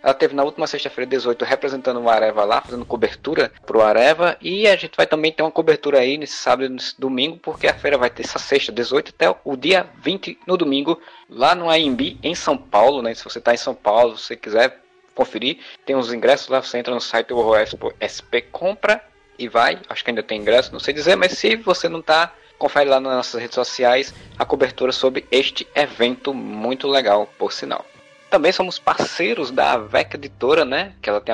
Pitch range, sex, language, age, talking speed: 115-155 Hz, male, Portuguese, 20-39, 215 wpm